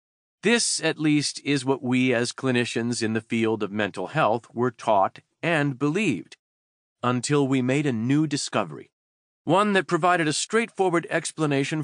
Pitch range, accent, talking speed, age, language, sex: 115-155 Hz, American, 150 wpm, 40-59, English, male